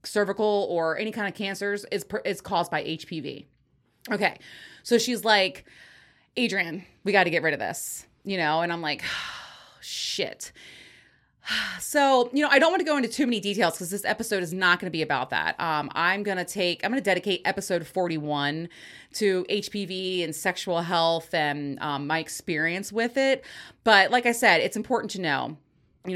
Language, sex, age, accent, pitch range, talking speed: English, female, 30-49, American, 155-195 Hz, 190 wpm